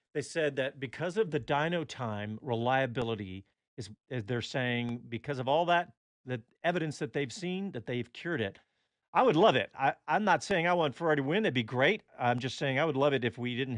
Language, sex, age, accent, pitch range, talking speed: English, male, 50-69, American, 115-165 Hz, 225 wpm